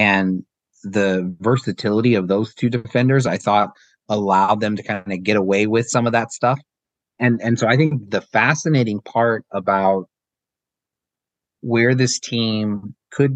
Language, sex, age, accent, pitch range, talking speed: English, male, 30-49, American, 100-120 Hz, 155 wpm